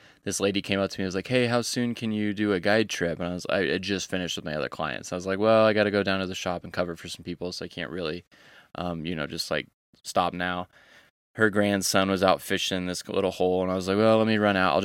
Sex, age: male, 20-39